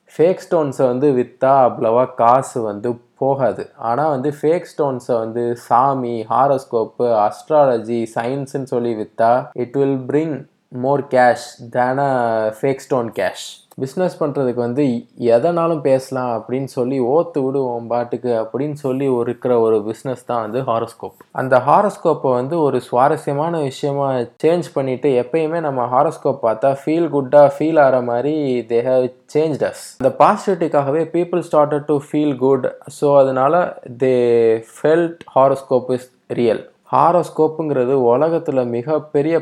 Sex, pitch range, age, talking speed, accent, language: male, 120-150 Hz, 20-39, 125 wpm, native, Tamil